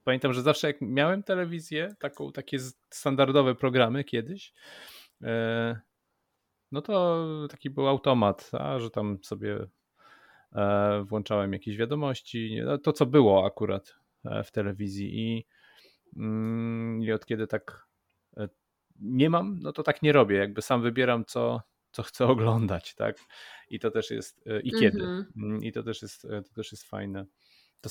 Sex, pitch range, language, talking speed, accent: male, 105-125 Hz, Polish, 130 wpm, native